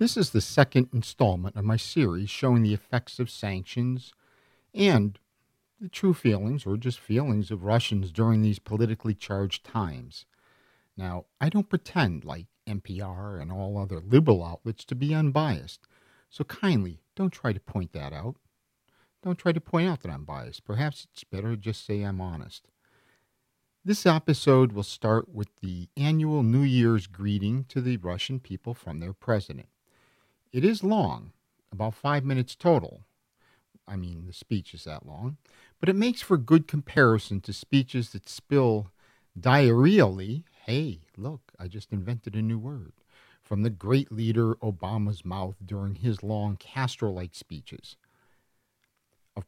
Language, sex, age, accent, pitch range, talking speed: English, male, 50-69, American, 100-135 Hz, 155 wpm